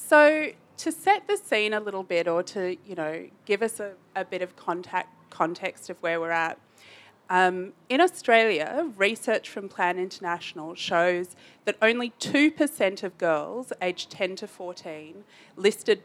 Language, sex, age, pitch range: English, female, 30-49, 165-205 Hz